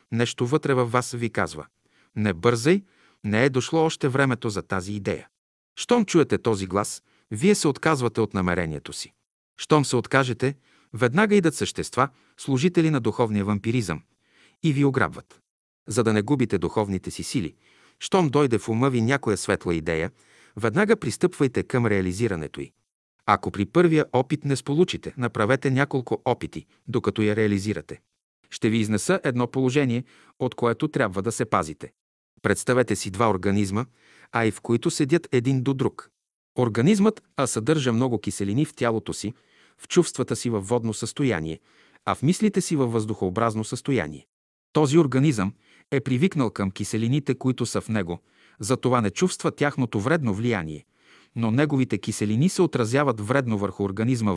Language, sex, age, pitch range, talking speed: Bulgarian, male, 50-69, 105-140 Hz, 155 wpm